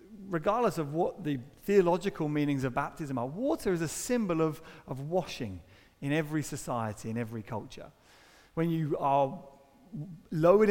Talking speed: 145 wpm